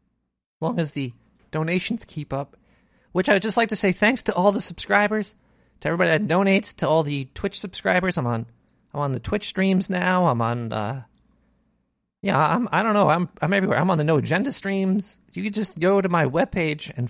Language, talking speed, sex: English, 210 wpm, male